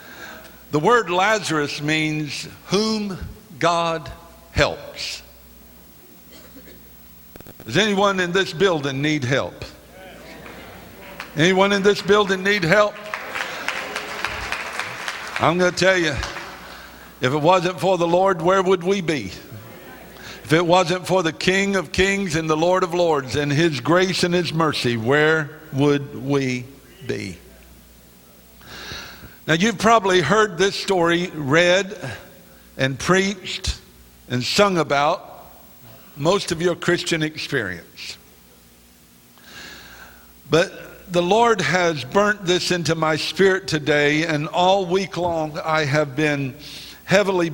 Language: English